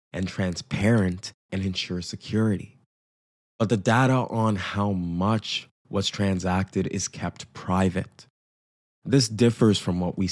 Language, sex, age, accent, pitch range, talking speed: English, male, 20-39, American, 85-100 Hz, 120 wpm